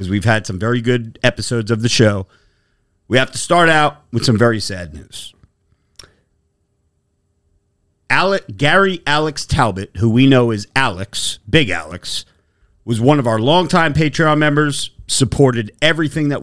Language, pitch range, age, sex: English, 100-135 Hz, 40-59, male